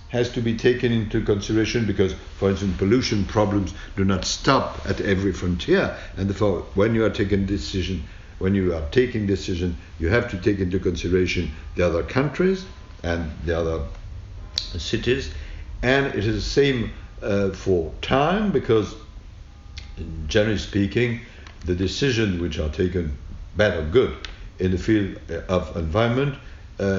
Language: English